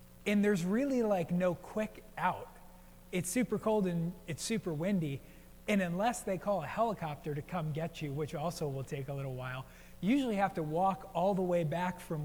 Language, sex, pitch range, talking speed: English, male, 150-185 Hz, 200 wpm